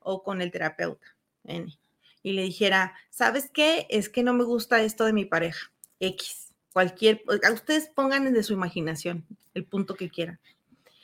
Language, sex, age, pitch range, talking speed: Spanish, female, 30-49, 220-295 Hz, 160 wpm